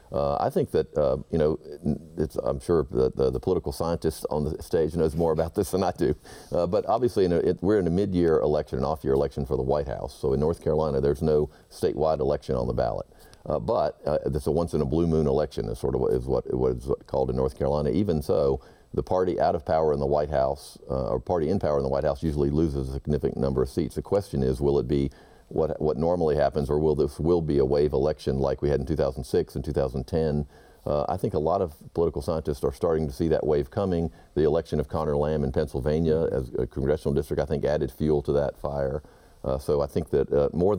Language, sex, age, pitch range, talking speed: English, male, 50-69, 70-80 Hz, 245 wpm